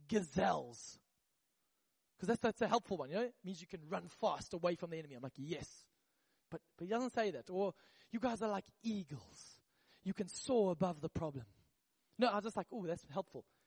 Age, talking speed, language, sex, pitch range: 20-39, 210 wpm, English, male, 185-245 Hz